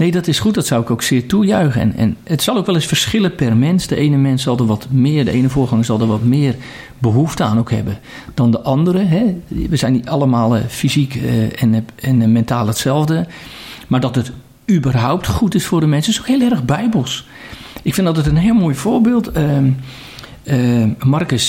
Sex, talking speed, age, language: male, 210 wpm, 50-69, Dutch